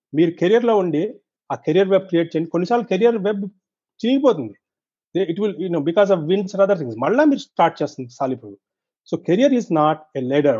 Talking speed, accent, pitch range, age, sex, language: 170 wpm, native, 145-185 Hz, 40-59, male, Telugu